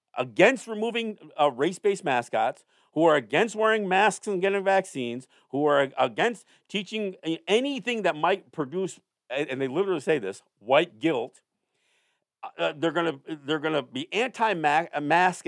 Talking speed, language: 125 wpm, English